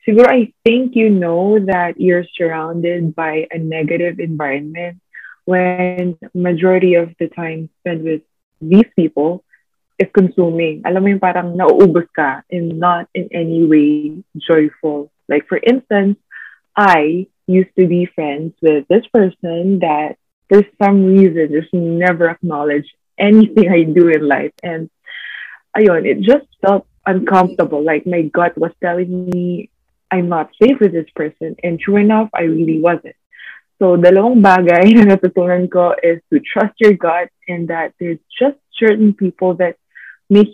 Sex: female